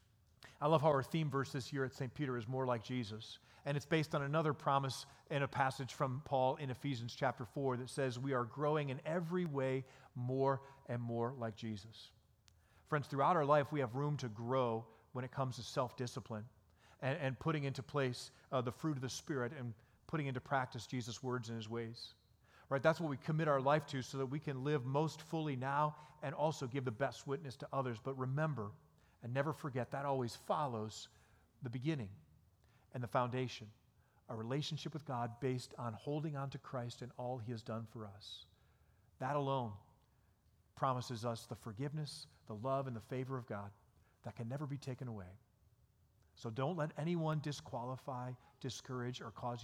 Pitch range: 115-140 Hz